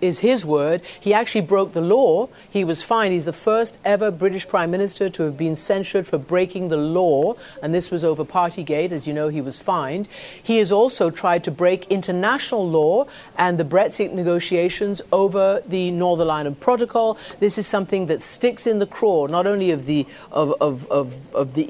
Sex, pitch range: female, 160-205 Hz